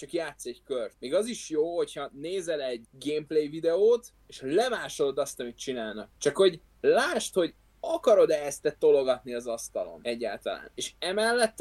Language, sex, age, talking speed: Hungarian, male, 20-39, 155 wpm